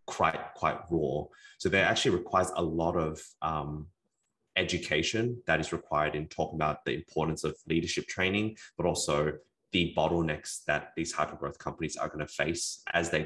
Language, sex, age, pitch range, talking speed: English, male, 20-39, 75-85 Hz, 170 wpm